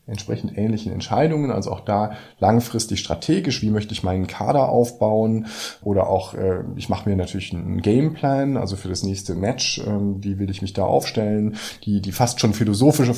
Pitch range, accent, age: 100-125 Hz, German, 20-39